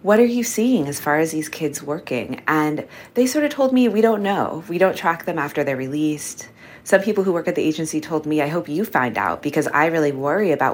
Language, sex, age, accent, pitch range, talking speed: English, female, 20-39, American, 130-170 Hz, 250 wpm